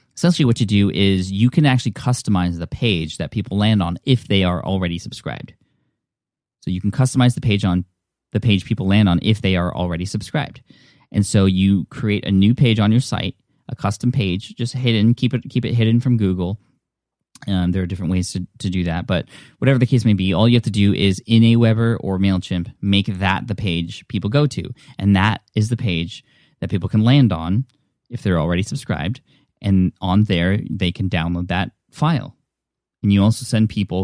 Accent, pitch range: American, 95-115 Hz